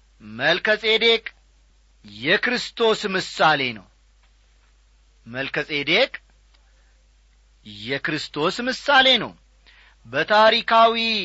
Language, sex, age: Amharic, male, 40-59